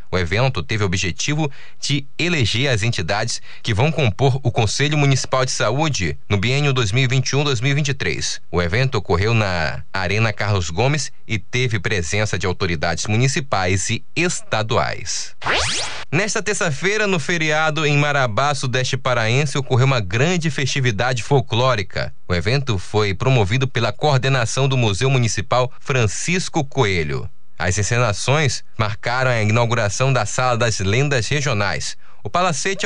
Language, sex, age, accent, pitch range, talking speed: Portuguese, male, 20-39, Brazilian, 105-140 Hz, 130 wpm